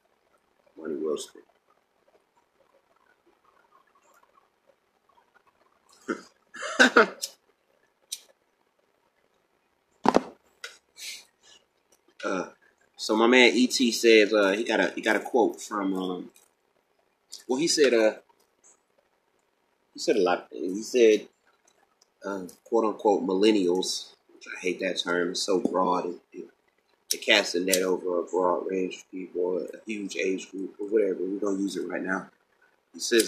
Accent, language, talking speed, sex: American, English, 120 wpm, male